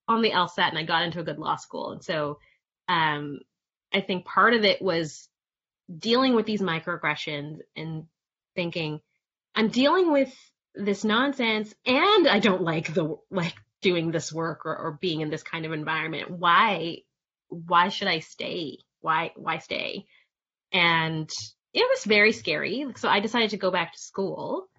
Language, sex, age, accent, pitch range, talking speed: English, female, 20-39, American, 160-205 Hz, 165 wpm